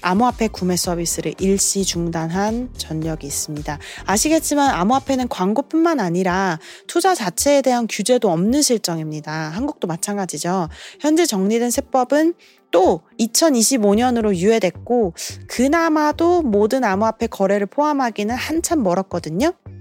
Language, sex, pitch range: Korean, female, 180-265 Hz